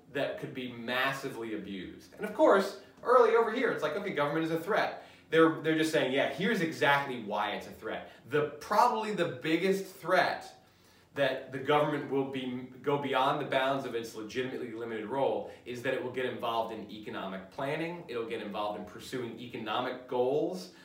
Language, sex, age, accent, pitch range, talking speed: English, male, 30-49, American, 125-160 Hz, 185 wpm